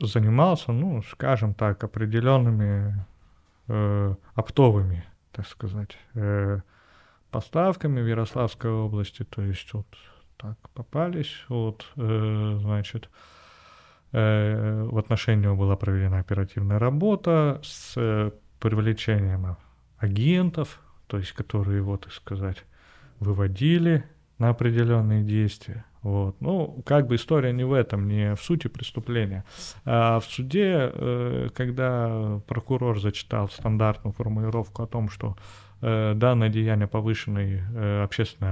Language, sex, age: Russian, male, 30-49